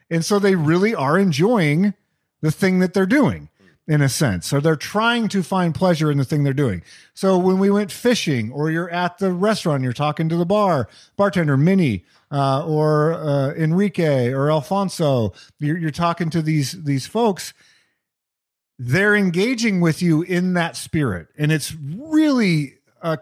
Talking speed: 170 wpm